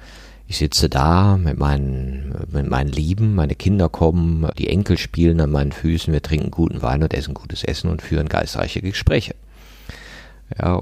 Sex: male